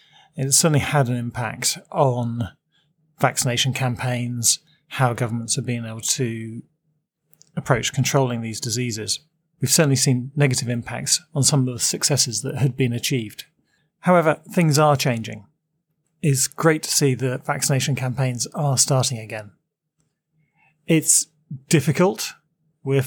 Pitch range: 125-155 Hz